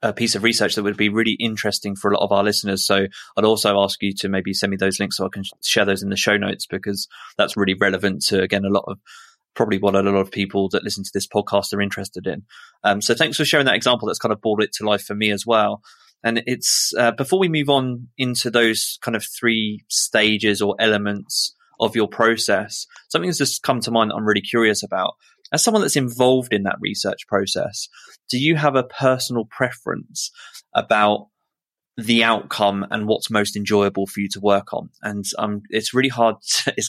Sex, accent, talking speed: male, British, 220 wpm